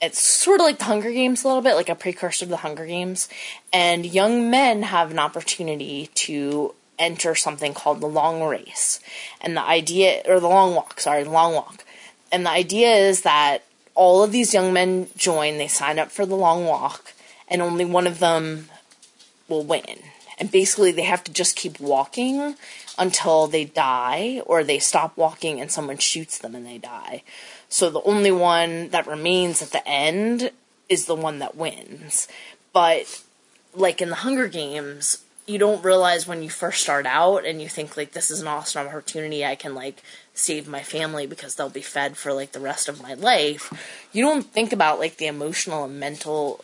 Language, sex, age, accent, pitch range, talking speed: English, female, 20-39, American, 150-185 Hz, 195 wpm